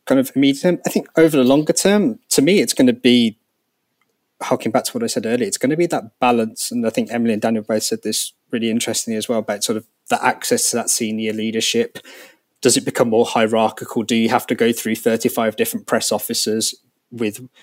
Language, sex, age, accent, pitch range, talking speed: English, male, 20-39, British, 110-135 Hz, 230 wpm